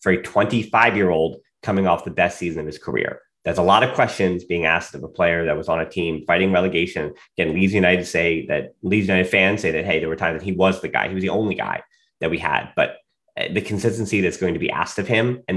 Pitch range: 95-140 Hz